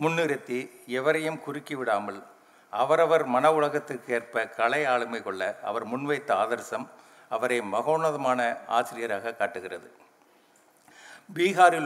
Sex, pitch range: male, 120-160 Hz